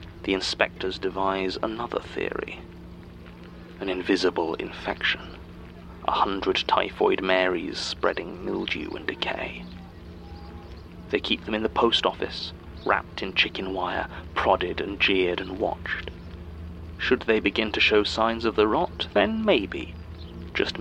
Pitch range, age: 80-95 Hz, 30-49